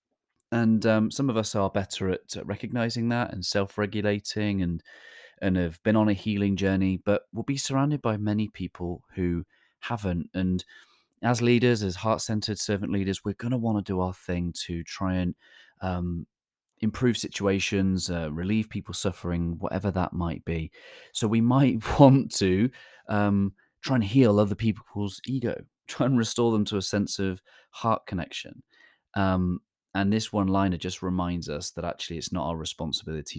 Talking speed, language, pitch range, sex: 170 wpm, English, 90-110 Hz, male